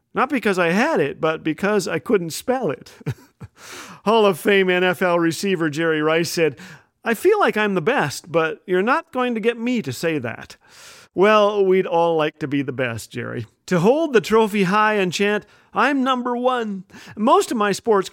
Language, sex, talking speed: English, male, 190 wpm